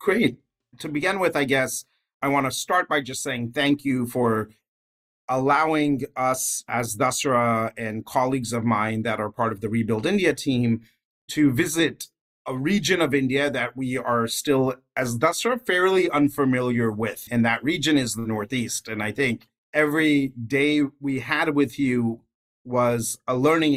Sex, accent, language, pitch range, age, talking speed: male, American, English, 120-155 Hz, 40-59, 160 wpm